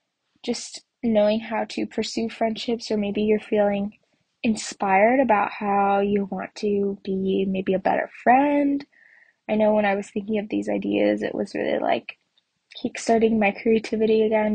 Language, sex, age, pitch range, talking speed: English, female, 10-29, 210-260 Hz, 155 wpm